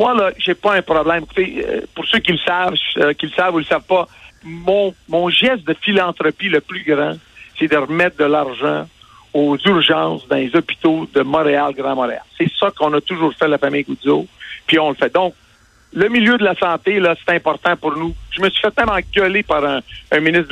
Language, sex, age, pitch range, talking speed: French, male, 60-79, 150-195 Hz, 220 wpm